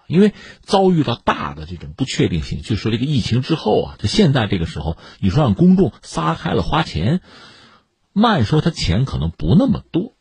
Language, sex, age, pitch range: Chinese, male, 50-69, 90-155 Hz